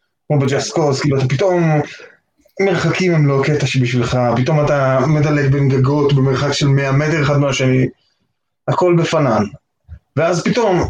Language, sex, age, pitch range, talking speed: Hebrew, male, 20-39, 135-170 Hz, 140 wpm